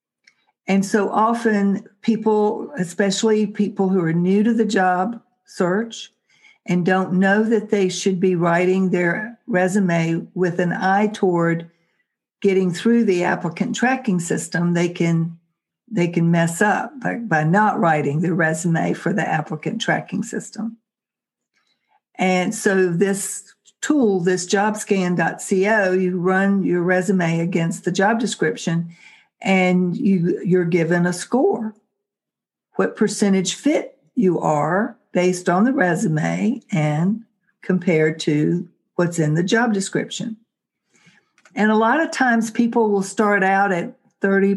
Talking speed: 135 wpm